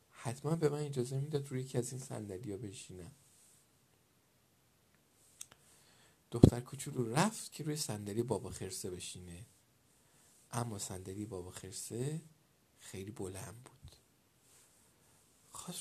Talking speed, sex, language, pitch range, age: 105 wpm, male, Persian, 110-145 Hz, 50-69